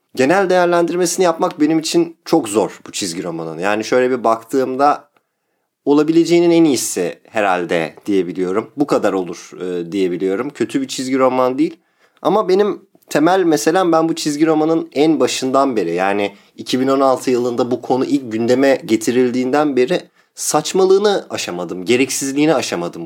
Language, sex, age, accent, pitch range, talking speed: Turkish, male, 30-49, native, 125-165 Hz, 140 wpm